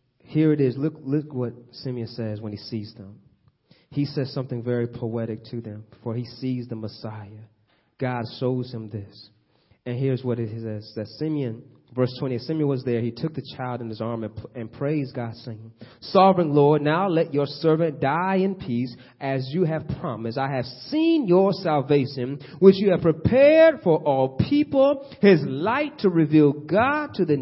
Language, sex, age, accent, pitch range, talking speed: English, male, 30-49, American, 125-190 Hz, 185 wpm